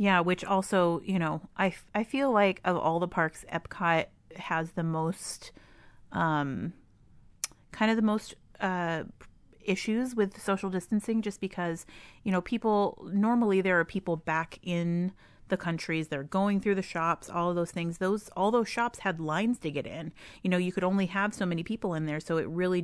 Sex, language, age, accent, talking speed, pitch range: female, English, 30-49, American, 190 wpm, 160-190 Hz